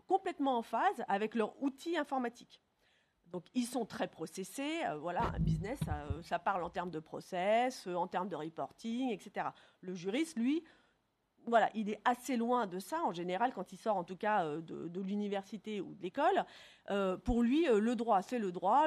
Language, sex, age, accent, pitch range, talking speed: French, female, 40-59, French, 190-265 Hz, 195 wpm